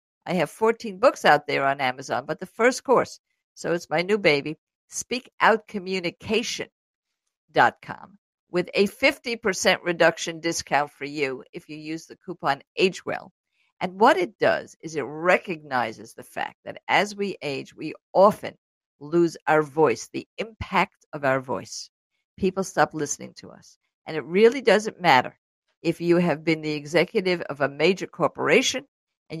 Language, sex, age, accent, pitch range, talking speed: English, female, 50-69, American, 150-195 Hz, 155 wpm